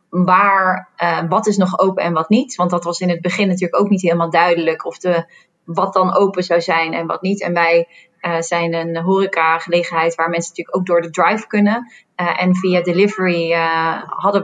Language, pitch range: Dutch, 175-195 Hz